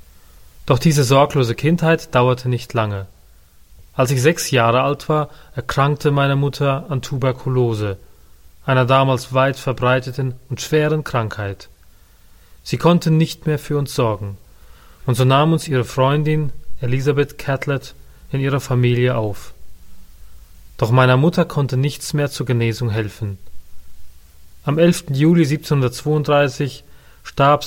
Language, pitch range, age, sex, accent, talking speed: German, 100-145 Hz, 30-49, male, German, 125 wpm